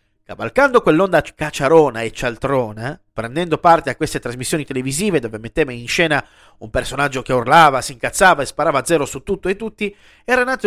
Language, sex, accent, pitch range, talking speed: Italian, male, native, 140-195 Hz, 175 wpm